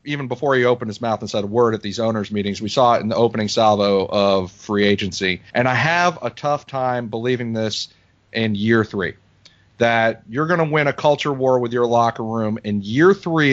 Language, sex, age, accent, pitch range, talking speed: English, male, 40-59, American, 105-125 Hz, 220 wpm